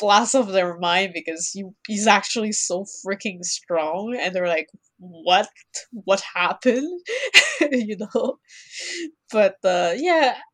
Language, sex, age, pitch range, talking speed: English, female, 20-39, 180-235 Hz, 120 wpm